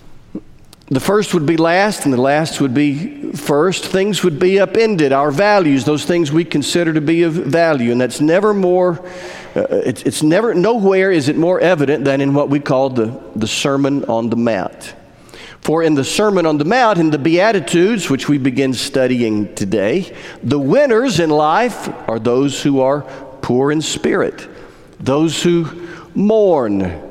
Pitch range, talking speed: 140-185 Hz, 175 wpm